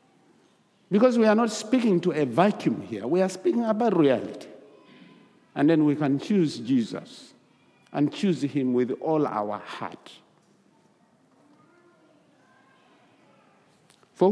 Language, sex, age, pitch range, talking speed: English, male, 50-69, 145-220 Hz, 115 wpm